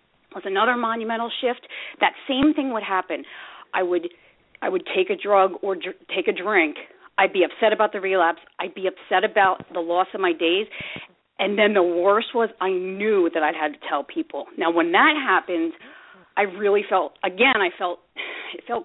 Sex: female